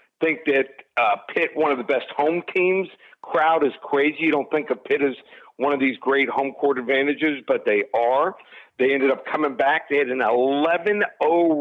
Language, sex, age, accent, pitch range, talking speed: English, male, 50-69, American, 135-180 Hz, 195 wpm